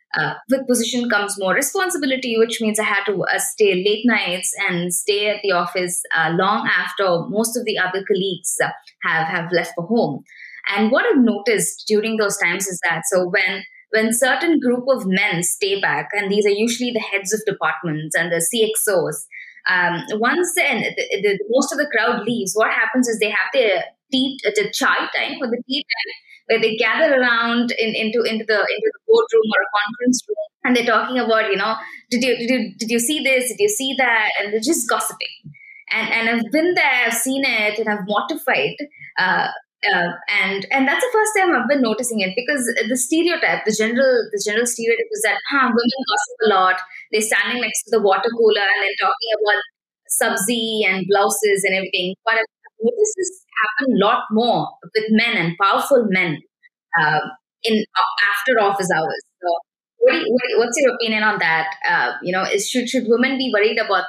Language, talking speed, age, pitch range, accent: English, 200 wpm, 20-39, 200-255 Hz, Indian